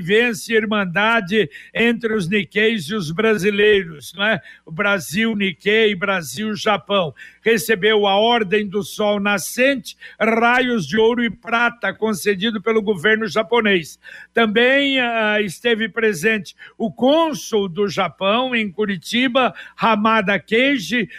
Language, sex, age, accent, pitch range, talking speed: Portuguese, male, 60-79, Brazilian, 205-235 Hz, 125 wpm